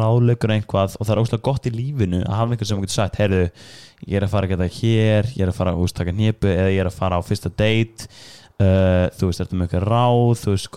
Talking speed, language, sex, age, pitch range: 265 wpm, English, male, 20-39, 95-115 Hz